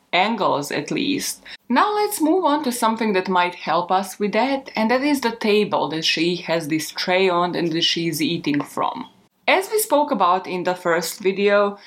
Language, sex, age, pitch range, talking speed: English, female, 20-39, 170-225 Hz, 195 wpm